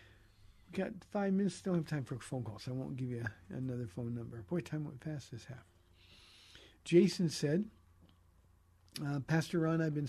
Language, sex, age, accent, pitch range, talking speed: English, male, 50-69, American, 130-170 Hz, 185 wpm